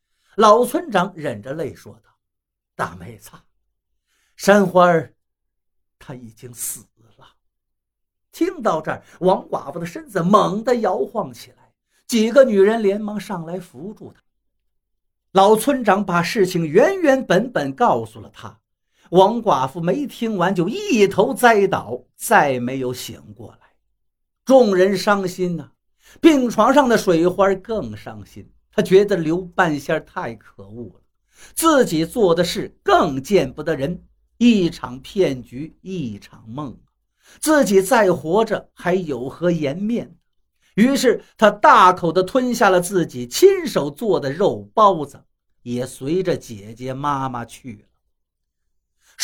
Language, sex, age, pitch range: Chinese, male, 60-79, 130-210 Hz